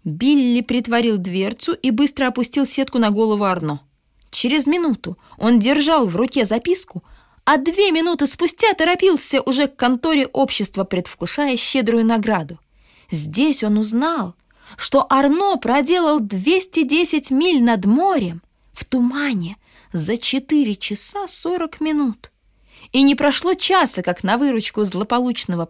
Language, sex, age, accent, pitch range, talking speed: Russian, female, 20-39, native, 190-285 Hz, 125 wpm